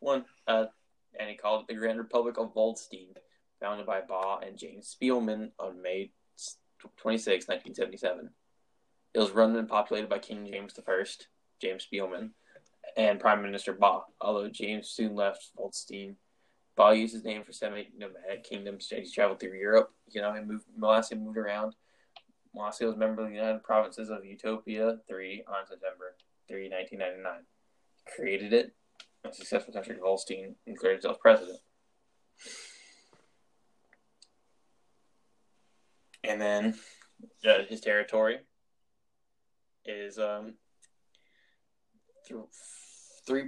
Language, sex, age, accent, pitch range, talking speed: English, male, 10-29, American, 100-110 Hz, 125 wpm